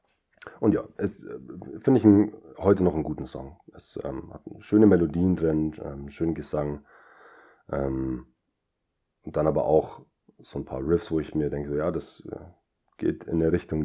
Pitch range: 75-105 Hz